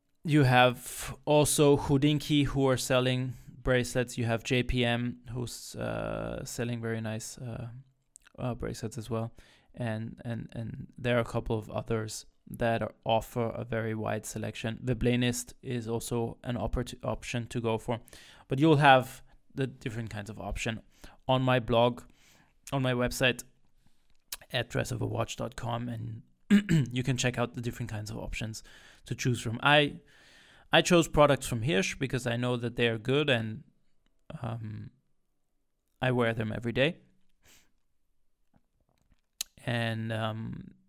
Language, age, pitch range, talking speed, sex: English, 20-39, 115-135 Hz, 140 wpm, male